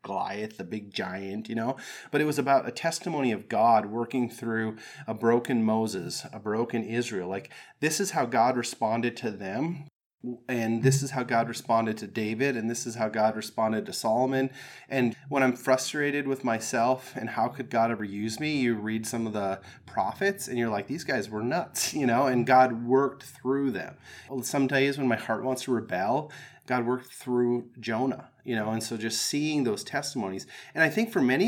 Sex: male